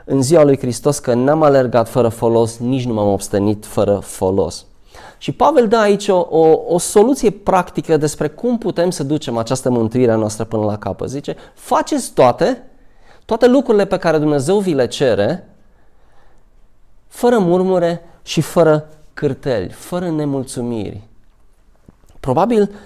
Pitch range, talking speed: 115-160 Hz, 140 wpm